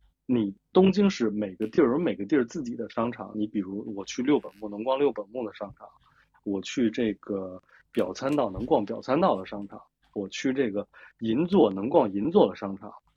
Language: Chinese